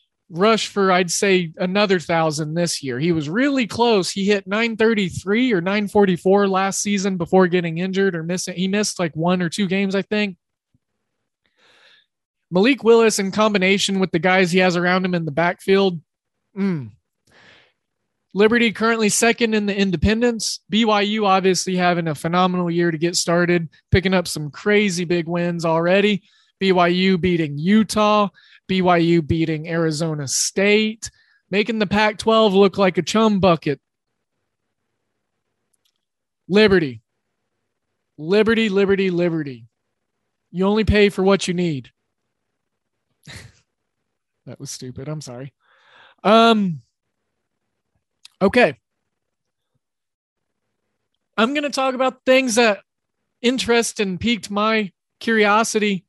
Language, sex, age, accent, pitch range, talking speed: English, male, 20-39, American, 170-210 Hz, 125 wpm